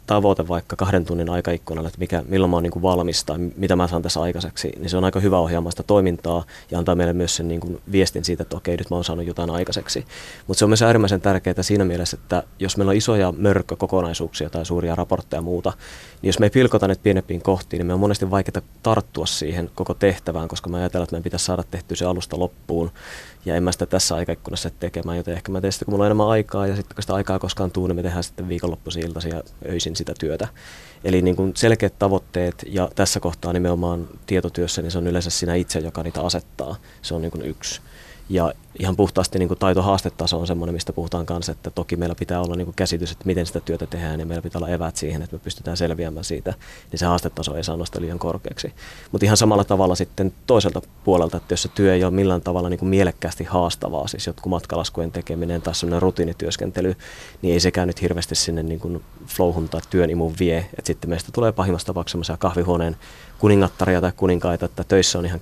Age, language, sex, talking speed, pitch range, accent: 30-49, Finnish, male, 215 wpm, 85-95 Hz, native